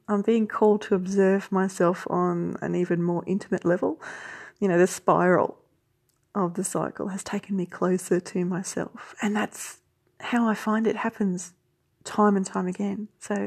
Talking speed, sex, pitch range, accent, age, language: 165 wpm, female, 175-210 Hz, Australian, 30-49, English